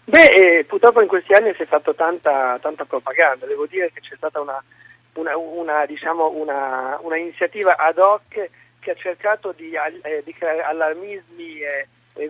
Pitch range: 155-190 Hz